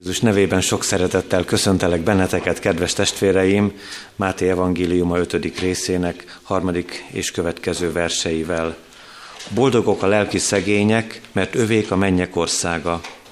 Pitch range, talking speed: 85-105 Hz, 110 wpm